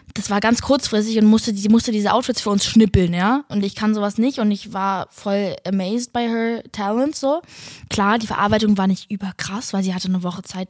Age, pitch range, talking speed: 20-39, 200-235 Hz, 225 wpm